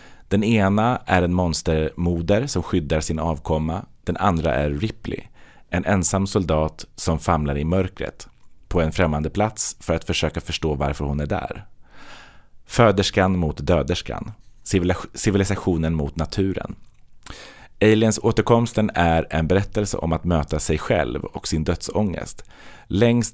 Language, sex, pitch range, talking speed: Swedish, male, 80-100 Hz, 135 wpm